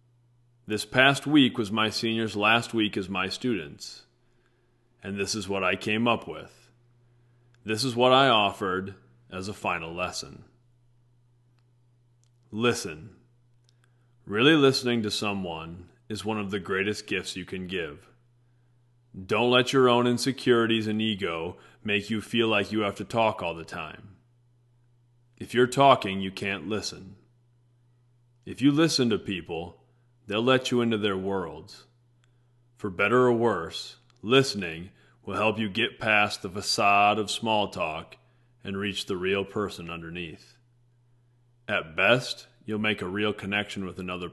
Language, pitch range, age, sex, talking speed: English, 105-120 Hz, 30-49, male, 145 wpm